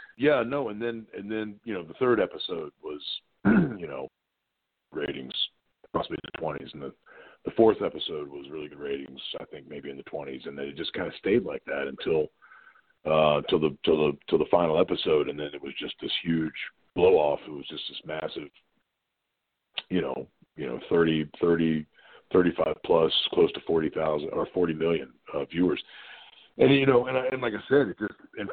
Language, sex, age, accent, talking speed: English, male, 40-59, American, 205 wpm